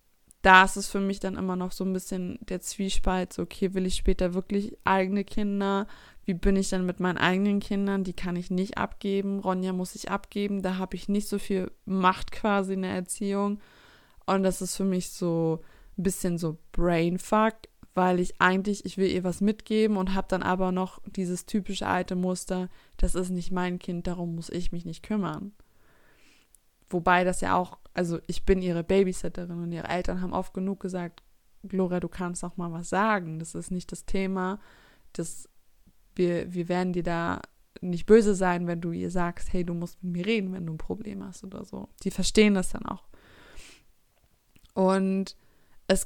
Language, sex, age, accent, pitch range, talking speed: German, female, 20-39, German, 180-200 Hz, 190 wpm